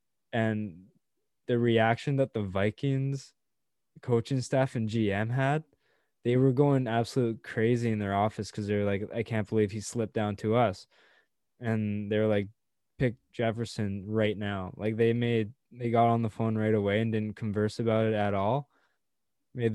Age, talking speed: 20-39, 175 wpm